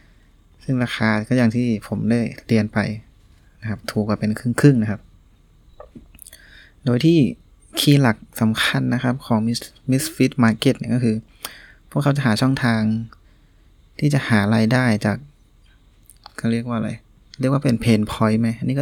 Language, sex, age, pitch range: Thai, male, 20-39, 110-130 Hz